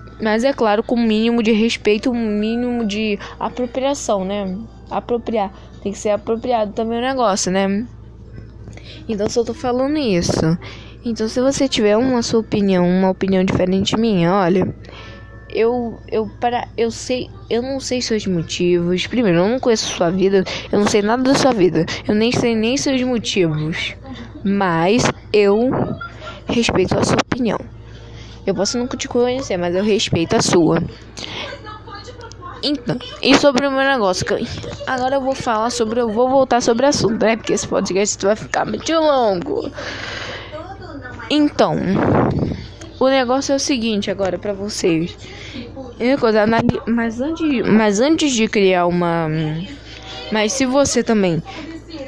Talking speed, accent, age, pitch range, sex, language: 150 wpm, Brazilian, 10-29, 185-245 Hz, female, Portuguese